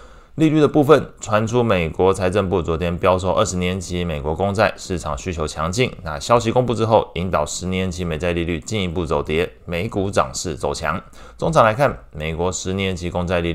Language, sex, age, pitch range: Chinese, male, 20-39, 80-100 Hz